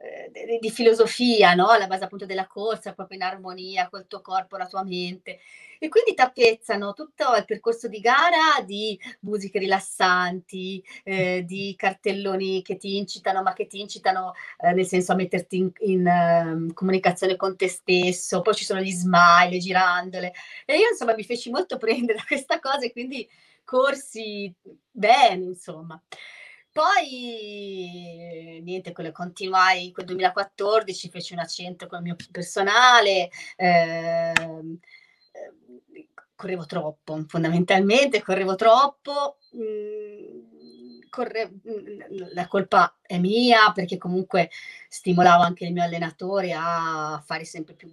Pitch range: 180-225 Hz